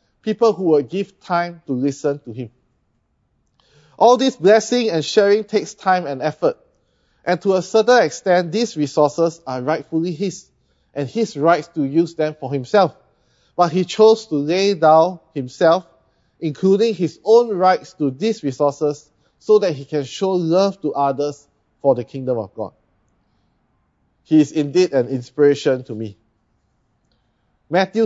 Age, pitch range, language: 20-39, 140-200 Hz, English